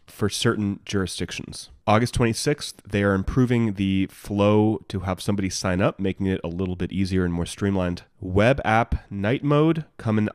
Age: 30-49